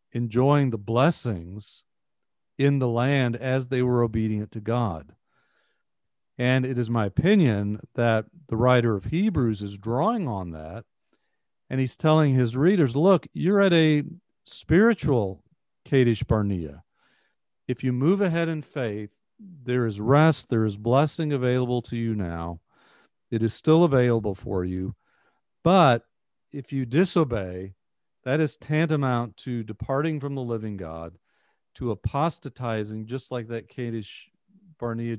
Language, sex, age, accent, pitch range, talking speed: English, male, 40-59, American, 110-140 Hz, 135 wpm